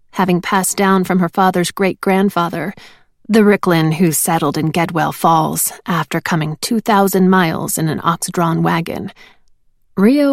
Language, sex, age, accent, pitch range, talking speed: English, female, 30-49, American, 160-205 Hz, 135 wpm